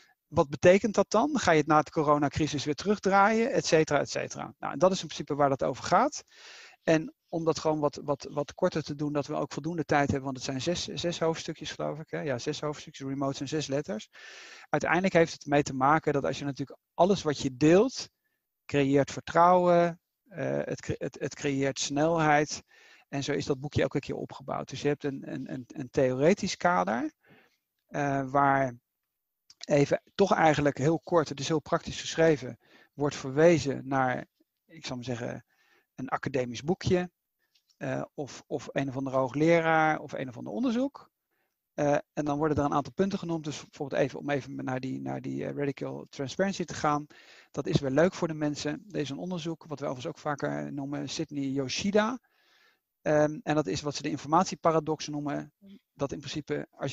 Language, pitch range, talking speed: Dutch, 140-170 Hz, 195 wpm